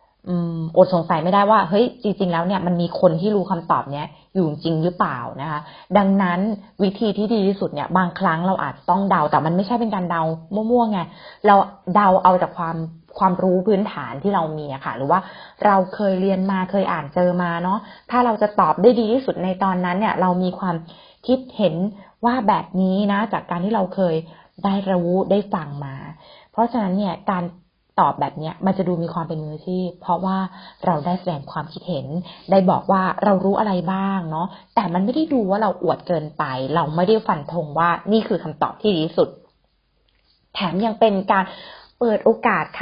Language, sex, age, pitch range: Thai, female, 20-39, 170-205 Hz